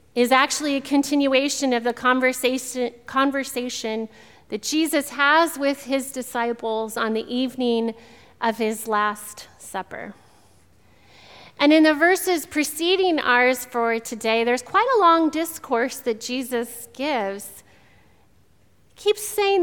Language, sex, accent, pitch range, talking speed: English, female, American, 225-285 Hz, 120 wpm